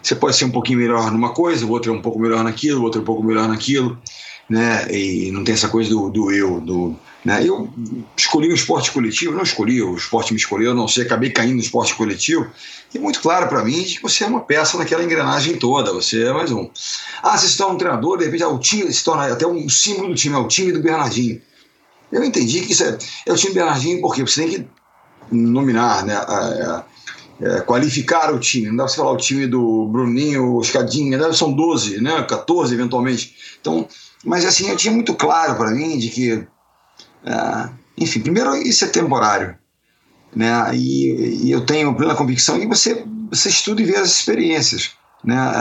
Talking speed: 215 wpm